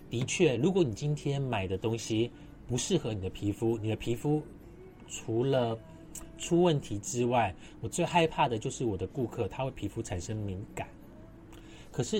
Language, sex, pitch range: Chinese, male, 110-160 Hz